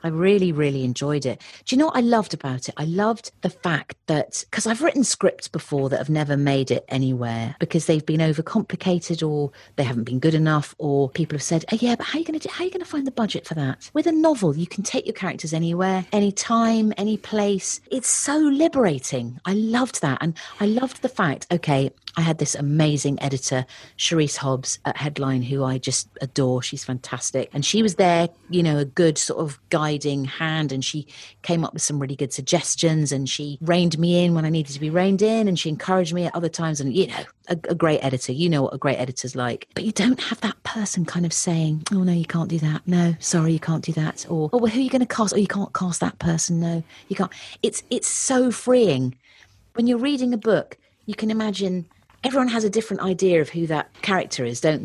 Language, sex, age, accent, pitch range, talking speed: English, female, 40-59, British, 140-200 Hz, 230 wpm